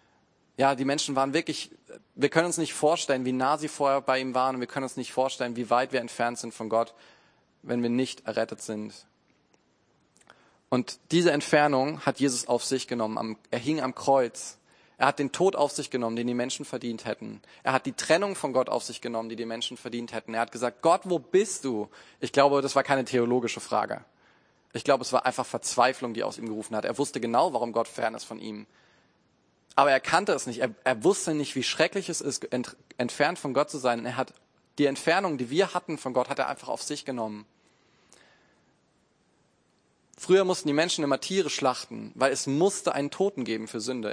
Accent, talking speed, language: German, 215 wpm, German